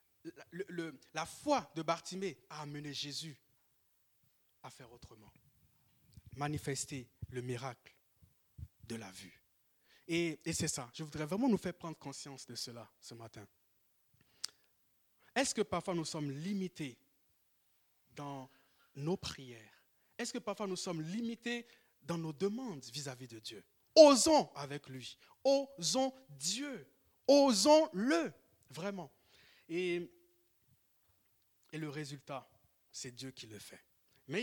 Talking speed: 120 wpm